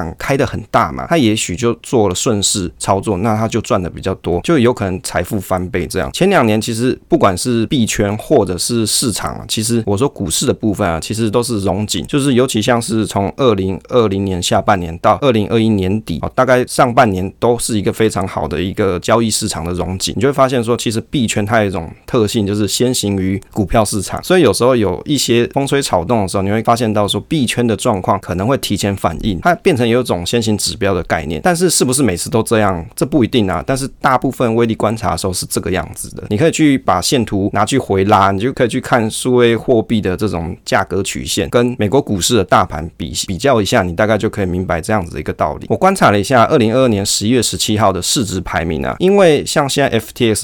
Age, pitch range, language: 20-39, 95-120 Hz, Chinese